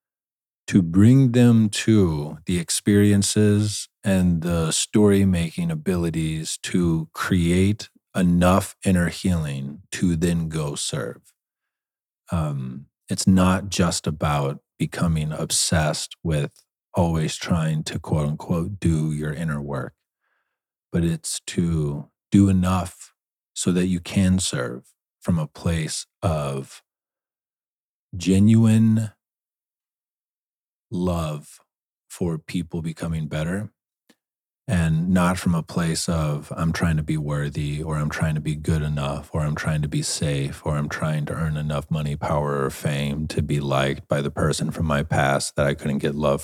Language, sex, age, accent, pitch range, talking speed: English, male, 40-59, American, 75-95 Hz, 135 wpm